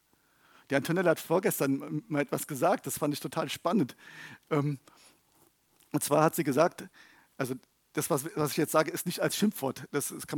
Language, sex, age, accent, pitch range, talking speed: German, male, 50-69, German, 145-205 Hz, 170 wpm